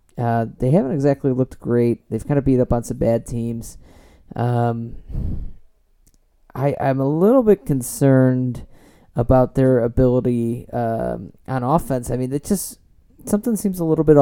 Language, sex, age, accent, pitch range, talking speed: English, male, 30-49, American, 115-145 Hz, 150 wpm